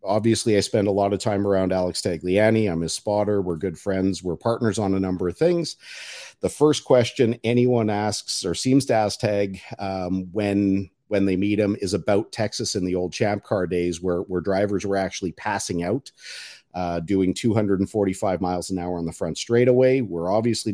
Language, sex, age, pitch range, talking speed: English, male, 50-69, 95-110 Hz, 195 wpm